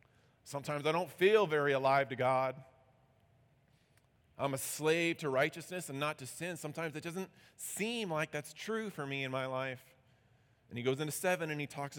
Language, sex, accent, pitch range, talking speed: English, male, American, 120-145 Hz, 185 wpm